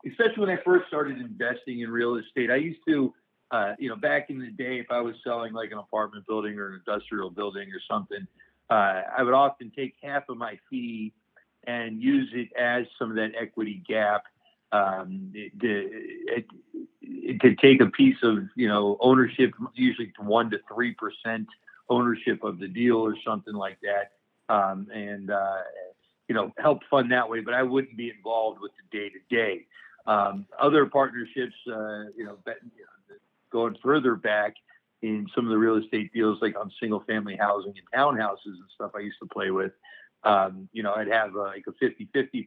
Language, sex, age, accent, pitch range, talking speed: English, male, 50-69, American, 105-130 Hz, 195 wpm